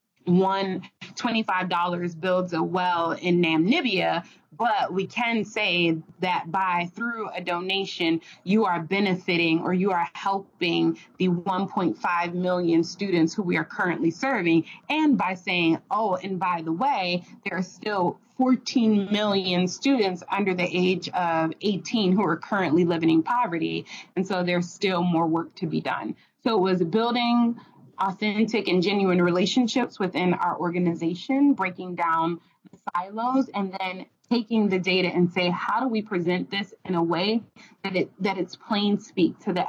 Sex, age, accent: female, 20-39, American